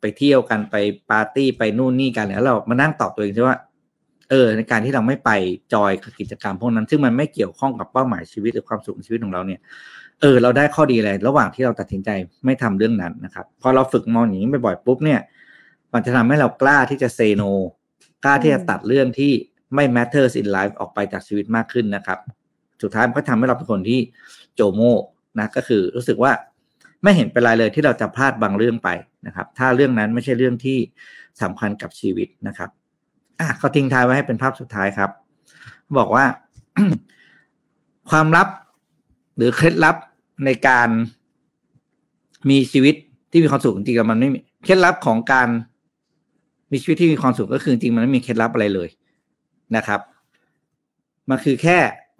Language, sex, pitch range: Thai, male, 110-135 Hz